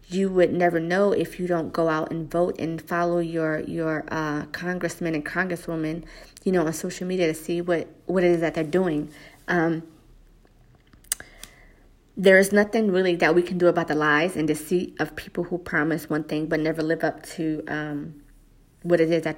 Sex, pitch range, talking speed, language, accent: female, 160-180 Hz, 195 wpm, English, American